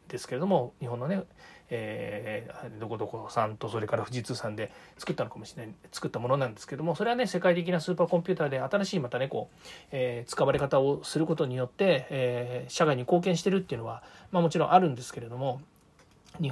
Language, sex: Japanese, male